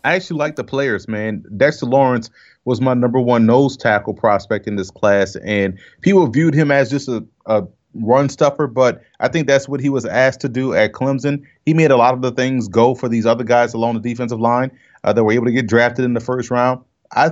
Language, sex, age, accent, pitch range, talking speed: English, male, 30-49, American, 115-135 Hz, 230 wpm